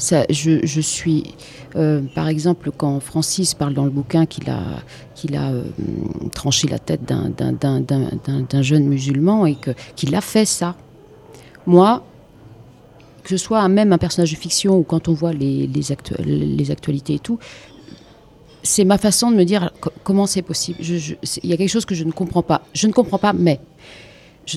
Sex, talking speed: female, 200 wpm